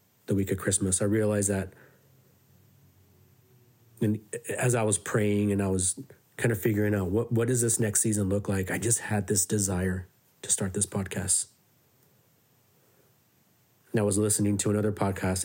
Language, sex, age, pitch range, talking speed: English, male, 30-49, 100-115 Hz, 165 wpm